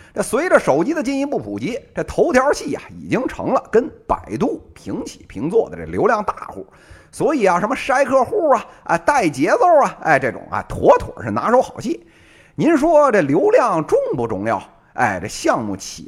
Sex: male